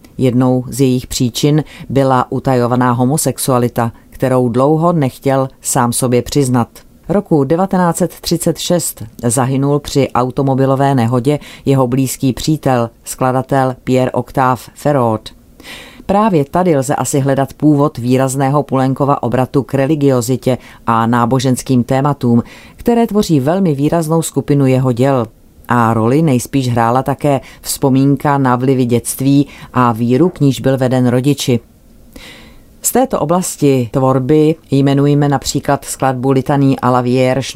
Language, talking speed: Czech, 120 wpm